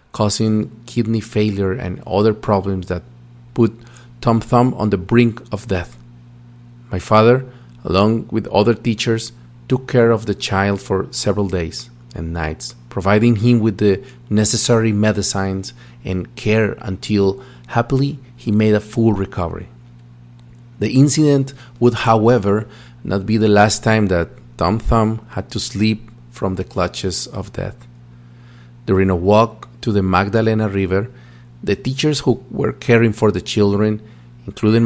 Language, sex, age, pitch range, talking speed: English, male, 40-59, 95-115 Hz, 140 wpm